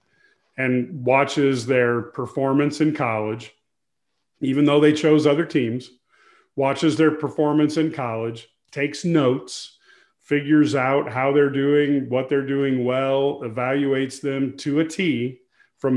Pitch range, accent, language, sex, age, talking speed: 125-150 Hz, American, English, male, 40-59, 130 wpm